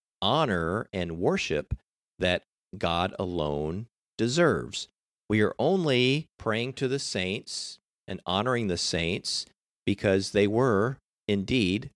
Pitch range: 90-115 Hz